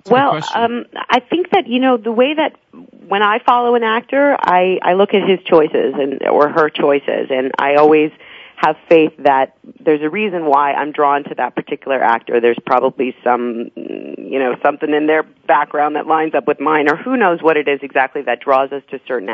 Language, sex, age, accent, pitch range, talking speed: English, female, 40-59, American, 135-180 Hz, 210 wpm